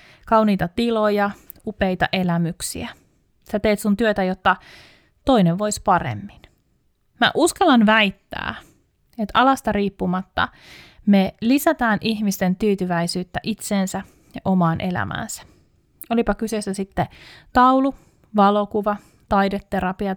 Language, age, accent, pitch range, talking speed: Finnish, 30-49, native, 185-225 Hz, 95 wpm